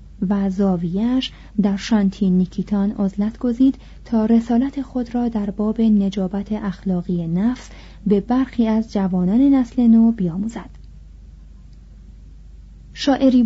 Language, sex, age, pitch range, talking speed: Persian, female, 30-49, 195-235 Hz, 105 wpm